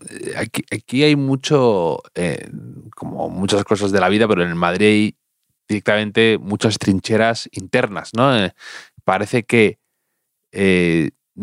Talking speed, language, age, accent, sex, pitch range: 130 wpm, Spanish, 30-49, Spanish, male, 105-125 Hz